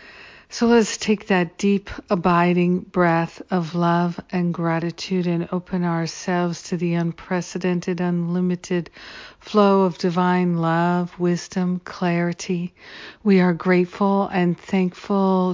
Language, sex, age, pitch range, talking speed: English, female, 50-69, 175-195 Hz, 110 wpm